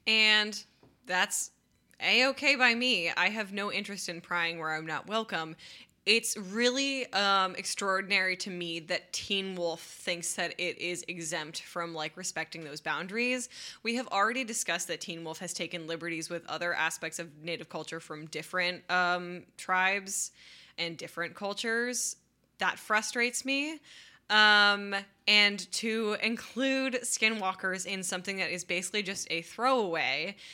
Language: English